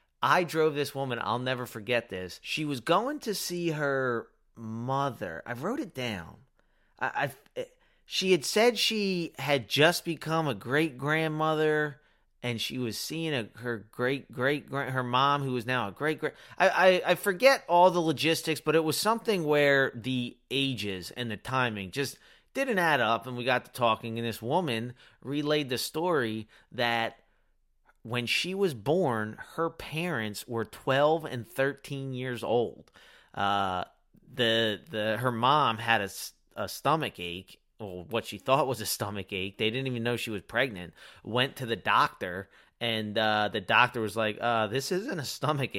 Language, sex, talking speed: English, male, 175 wpm